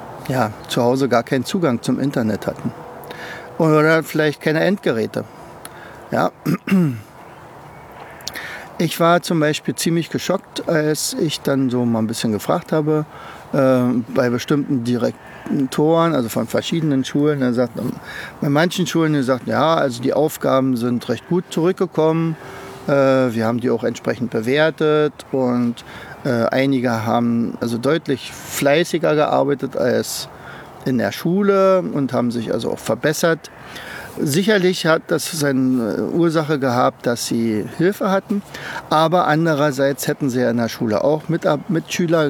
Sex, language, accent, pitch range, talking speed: male, German, German, 125-165 Hz, 135 wpm